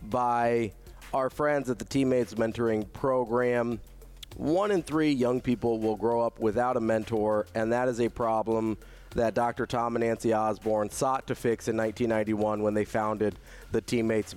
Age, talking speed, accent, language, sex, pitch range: 30-49, 165 wpm, American, English, male, 95-120 Hz